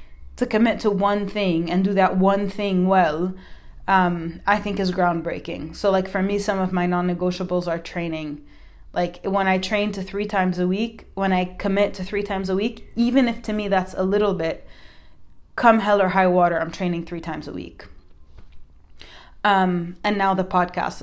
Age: 20-39